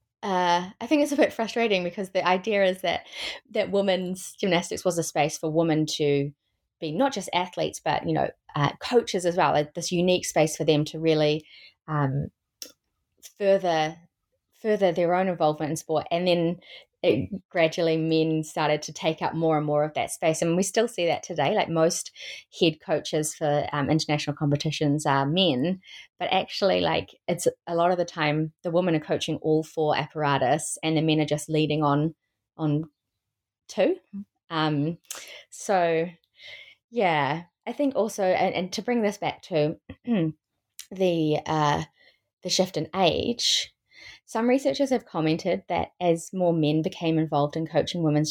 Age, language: 20-39, English